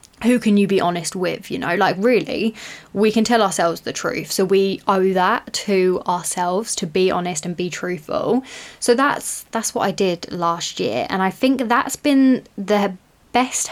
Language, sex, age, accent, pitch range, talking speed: English, female, 10-29, British, 180-220 Hz, 190 wpm